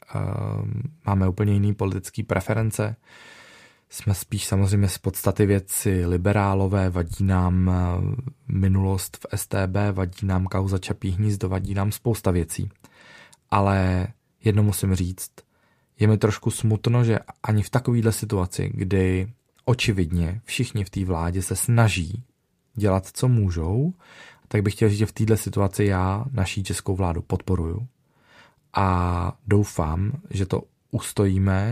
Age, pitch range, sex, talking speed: 20-39, 95-110 Hz, male, 125 wpm